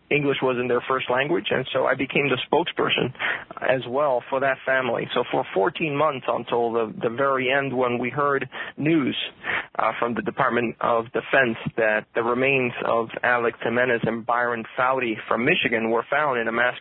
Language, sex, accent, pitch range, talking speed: English, male, American, 120-140 Hz, 185 wpm